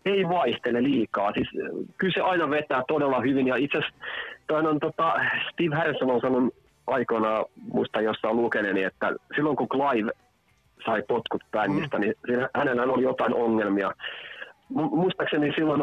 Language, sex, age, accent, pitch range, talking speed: Finnish, male, 30-49, native, 100-135 Hz, 135 wpm